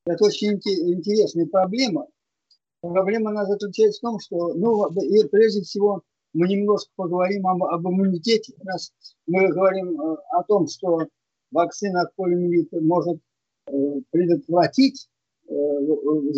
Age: 50-69